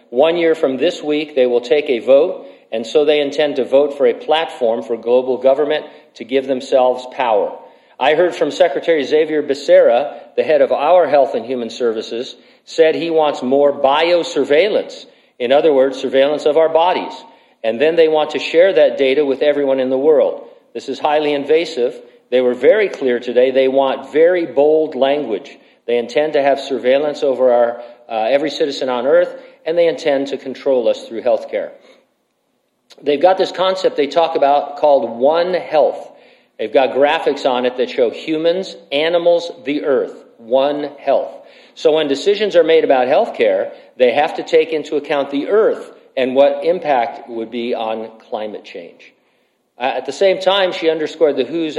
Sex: male